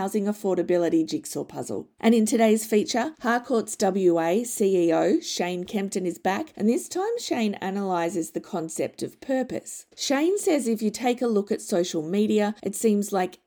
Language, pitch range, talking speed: English, 185-255 Hz, 165 wpm